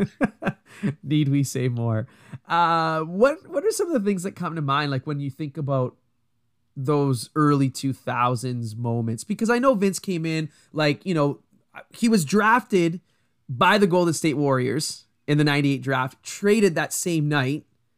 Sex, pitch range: male, 130-160 Hz